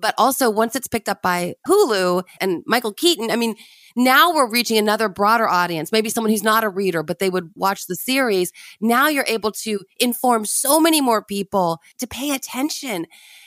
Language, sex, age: English, female, 30-49